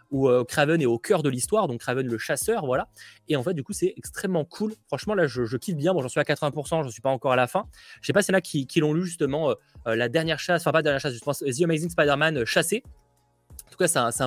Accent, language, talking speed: French, French, 305 wpm